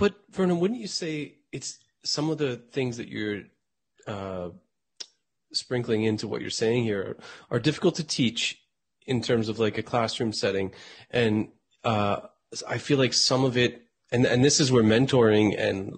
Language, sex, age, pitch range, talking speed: English, male, 30-49, 110-150 Hz, 175 wpm